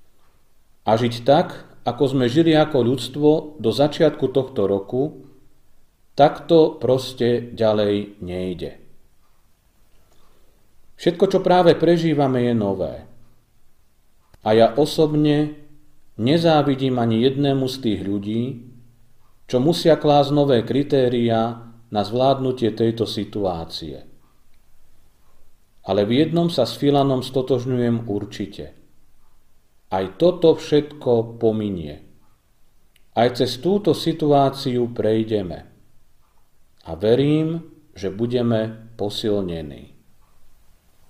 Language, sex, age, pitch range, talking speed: Slovak, male, 40-59, 105-145 Hz, 90 wpm